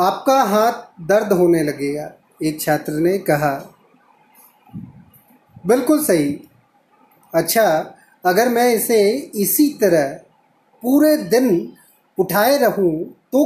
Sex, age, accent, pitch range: male, 30-49, native, 180-250 Hz